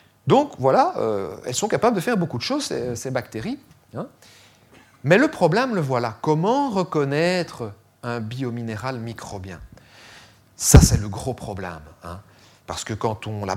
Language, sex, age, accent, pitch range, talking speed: French, male, 40-59, French, 105-155 Hz, 160 wpm